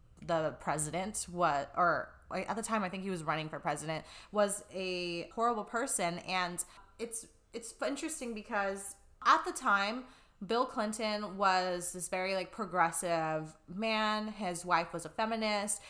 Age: 20-39